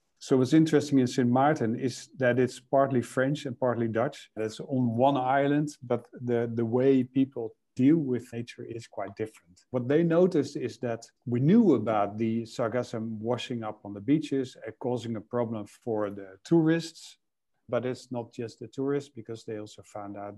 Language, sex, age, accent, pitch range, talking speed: English, male, 50-69, Dutch, 115-145 Hz, 185 wpm